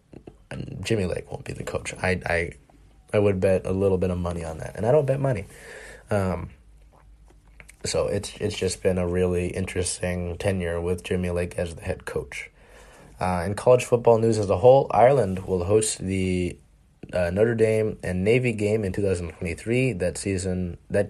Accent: American